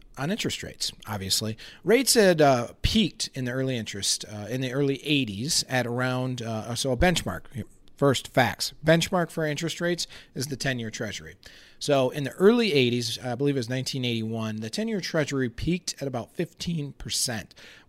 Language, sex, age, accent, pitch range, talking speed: English, male, 40-59, American, 110-155 Hz, 170 wpm